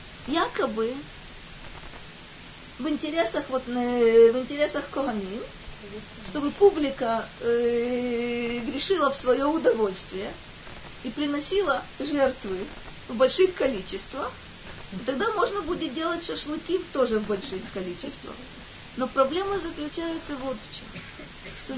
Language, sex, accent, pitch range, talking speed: Russian, female, native, 230-290 Hz, 95 wpm